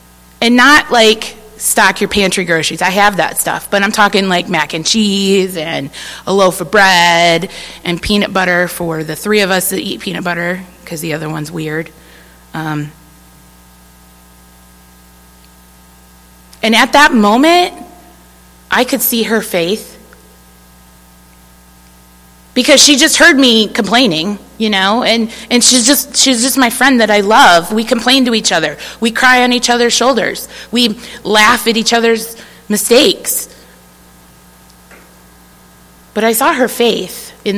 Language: English